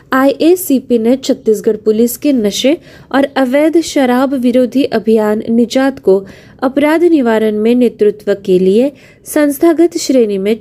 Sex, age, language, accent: female, 20-39, Marathi, native